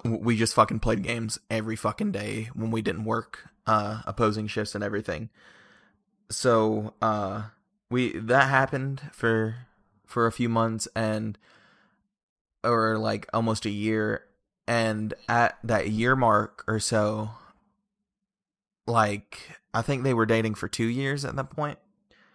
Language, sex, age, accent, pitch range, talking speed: English, male, 20-39, American, 110-120 Hz, 140 wpm